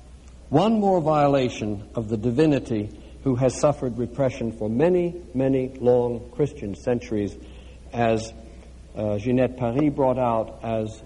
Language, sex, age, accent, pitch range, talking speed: English, male, 60-79, American, 100-155 Hz, 125 wpm